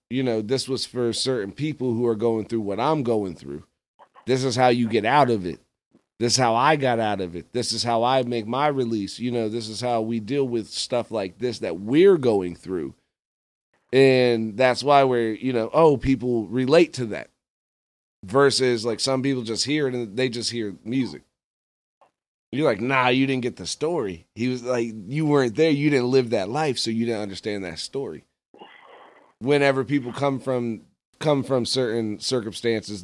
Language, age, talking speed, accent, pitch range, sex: English, 30-49, 200 wpm, American, 110-130 Hz, male